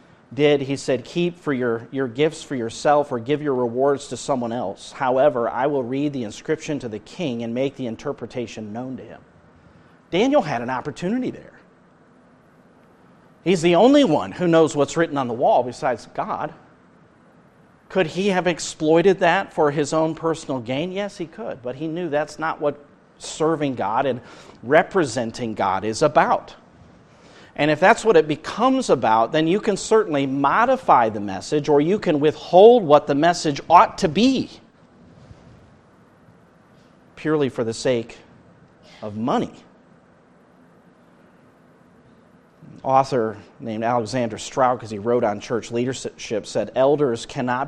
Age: 40-59